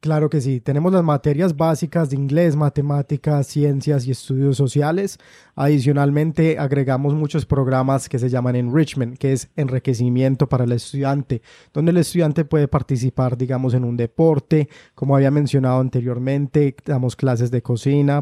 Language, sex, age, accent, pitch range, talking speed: Spanish, male, 20-39, Colombian, 130-150 Hz, 150 wpm